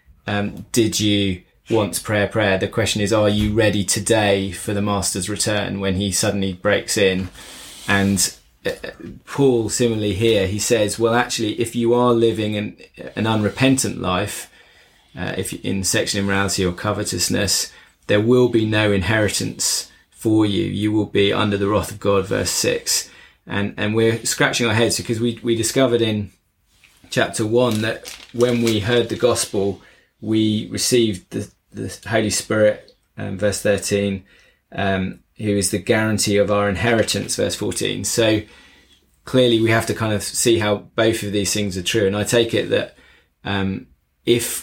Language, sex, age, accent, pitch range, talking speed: English, male, 20-39, British, 95-115 Hz, 165 wpm